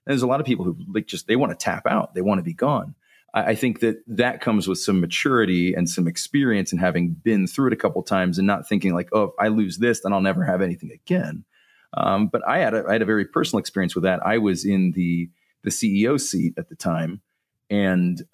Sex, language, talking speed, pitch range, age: male, English, 260 wpm, 90-110 Hz, 30-49